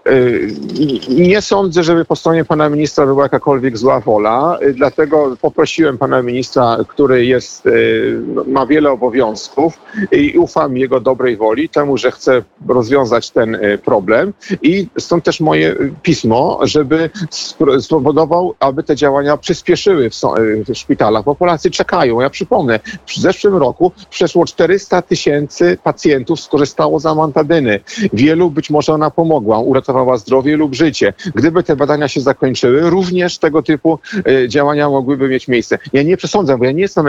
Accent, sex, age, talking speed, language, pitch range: native, male, 50-69, 140 wpm, Polish, 130-165 Hz